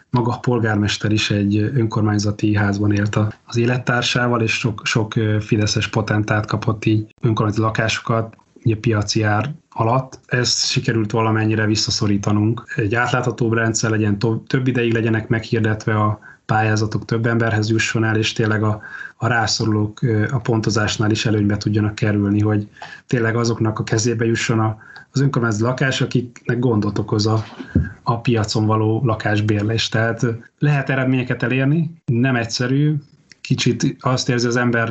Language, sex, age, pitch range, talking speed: Hungarian, male, 20-39, 110-125 Hz, 140 wpm